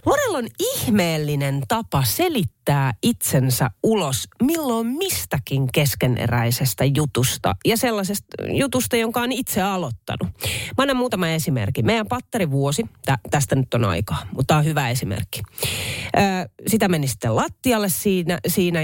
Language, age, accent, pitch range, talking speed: Finnish, 30-49, native, 130-205 Hz, 130 wpm